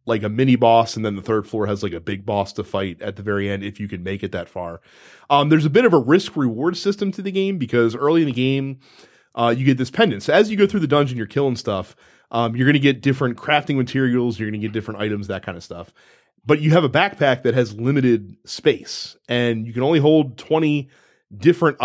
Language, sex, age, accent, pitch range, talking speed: English, male, 30-49, American, 115-150 Hz, 255 wpm